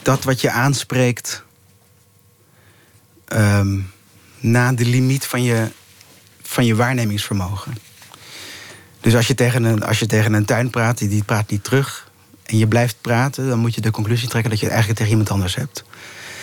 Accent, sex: Dutch, male